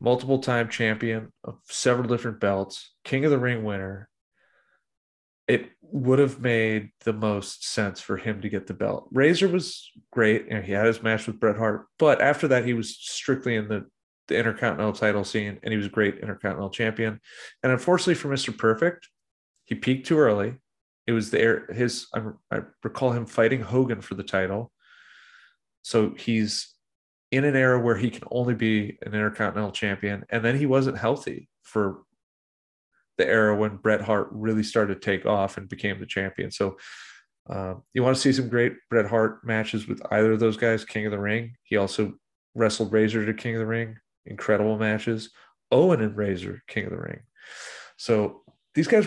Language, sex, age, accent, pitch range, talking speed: English, male, 30-49, American, 105-125 Hz, 185 wpm